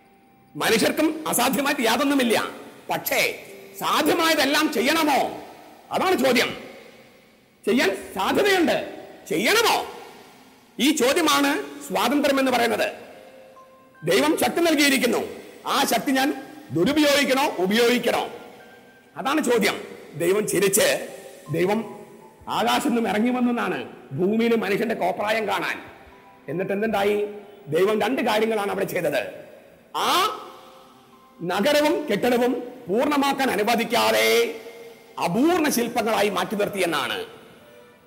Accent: Indian